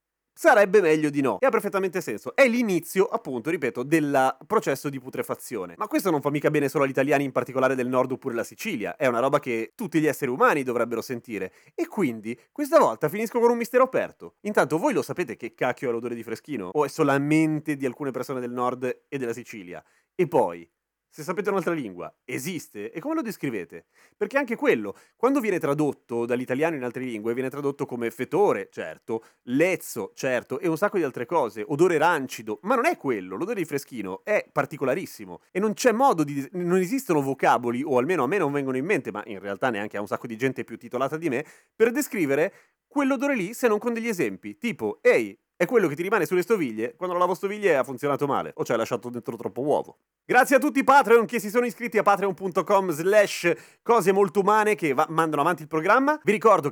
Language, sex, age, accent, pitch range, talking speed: Italian, male, 30-49, native, 130-205 Hz, 215 wpm